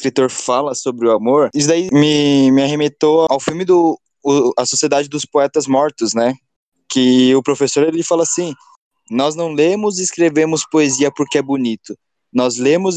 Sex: male